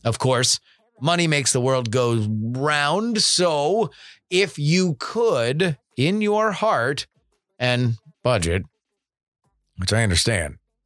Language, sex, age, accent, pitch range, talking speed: English, male, 30-49, American, 115-150 Hz, 110 wpm